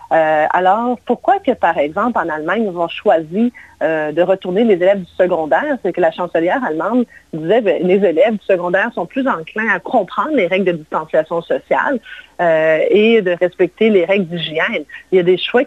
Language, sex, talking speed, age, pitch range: French, female, 195 wpm, 30-49, 180-235 Hz